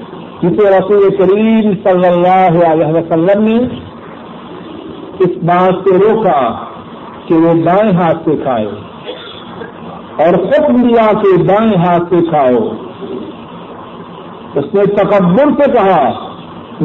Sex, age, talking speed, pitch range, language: male, 60-79, 110 wpm, 175-220 Hz, Urdu